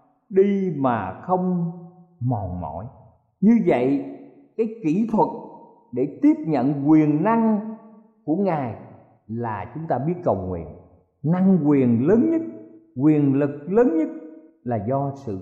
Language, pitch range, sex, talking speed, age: Vietnamese, 125-200 Hz, male, 130 wpm, 50-69